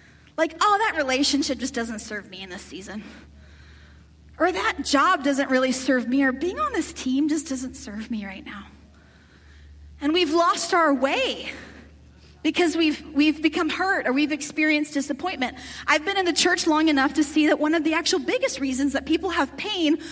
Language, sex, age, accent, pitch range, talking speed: English, female, 30-49, American, 230-320 Hz, 190 wpm